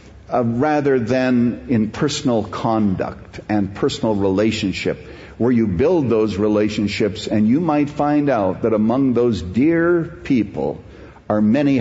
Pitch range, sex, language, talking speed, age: 115-160 Hz, male, English, 125 wpm, 60-79